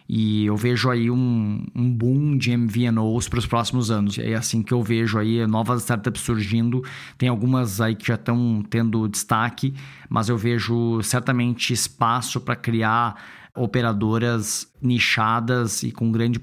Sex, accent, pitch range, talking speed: male, Brazilian, 110-125 Hz, 155 wpm